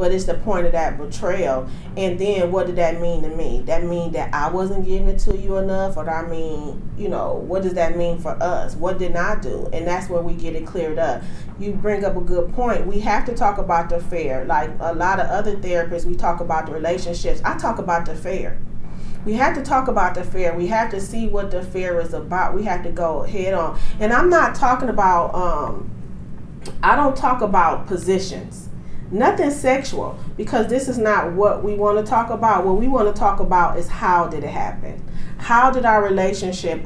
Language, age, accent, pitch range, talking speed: English, 30-49, American, 170-215 Hz, 225 wpm